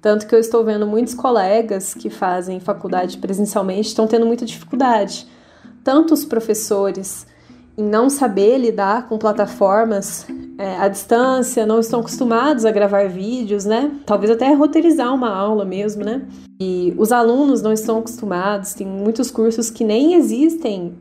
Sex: female